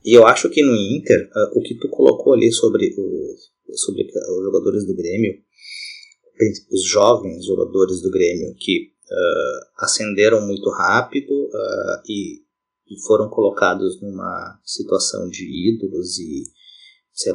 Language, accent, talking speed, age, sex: Portuguese, Brazilian, 140 wpm, 30-49, male